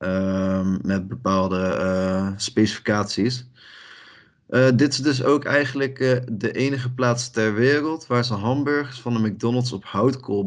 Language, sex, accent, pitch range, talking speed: Dutch, male, Dutch, 105-125 Hz, 145 wpm